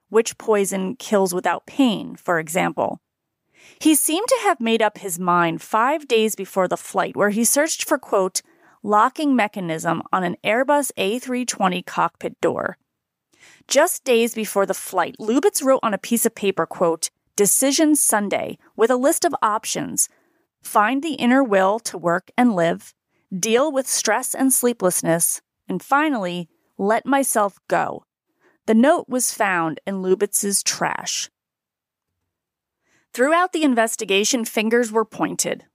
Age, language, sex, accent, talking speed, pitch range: 30-49, English, female, American, 140 wpm, 195-265 Hz